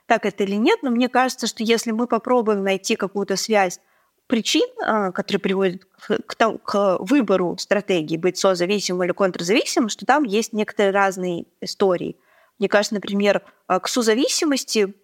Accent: native